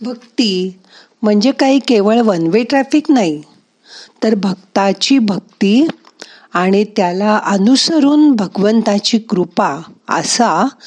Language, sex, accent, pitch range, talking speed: Marathi, female, native, 185-255 Hz, 95 wpm